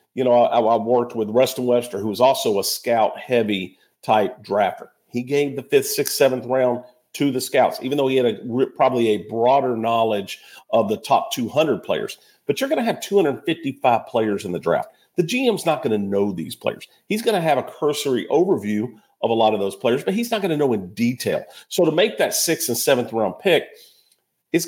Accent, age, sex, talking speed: American, 50-69, male, 215 wpm